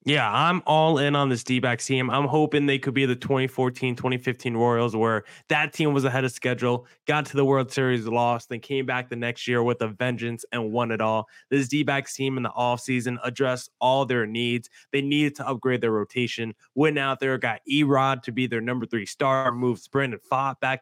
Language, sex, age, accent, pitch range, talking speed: English, male, 20-39, American, 125-140 Hz, 215 wpm